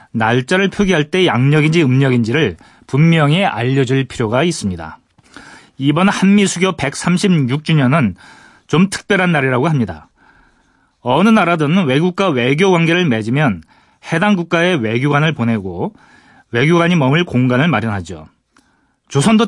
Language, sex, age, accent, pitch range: Korean, male, 40-59, native, 135-190 Hz